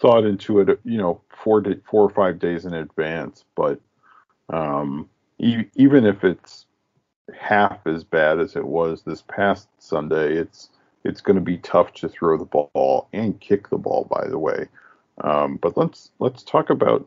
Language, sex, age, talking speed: English, male, 40-59, 180 wpm